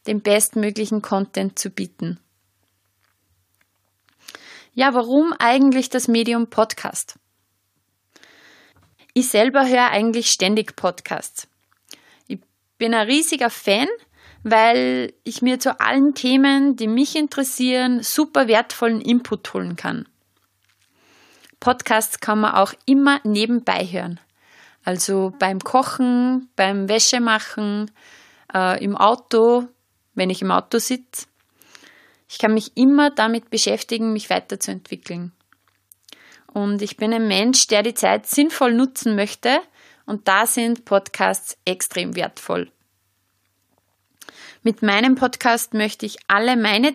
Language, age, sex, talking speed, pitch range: German, 20-39, female, 110 wpm, 195-250 Hz